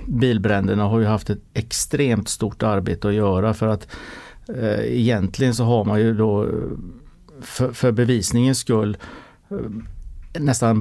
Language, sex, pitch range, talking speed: English, male, 105-115 Hz, 130 wpm